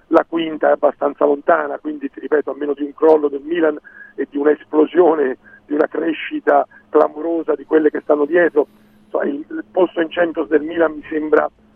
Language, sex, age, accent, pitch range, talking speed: Italian, male, 50-69, native, 150-200 Hz, 175 wpm